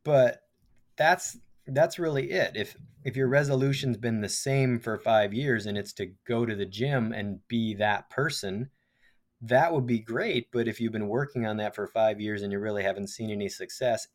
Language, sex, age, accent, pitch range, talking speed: English, male, 20-39, American, 100-115 Hz, 200 wpm